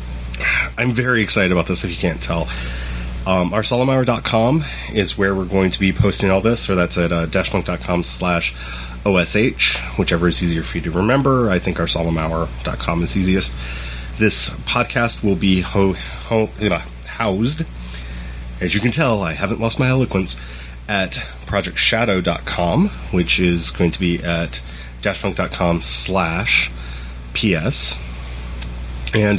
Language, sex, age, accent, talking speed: English, male, 30-49, American, 130 wpm